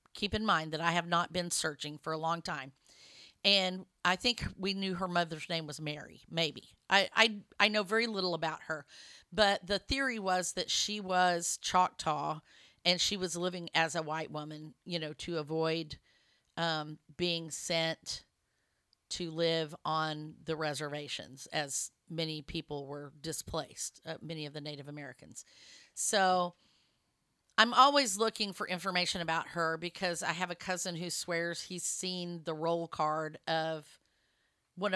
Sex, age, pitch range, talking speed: female, 40-59, 160-185 Hz, 160 wpm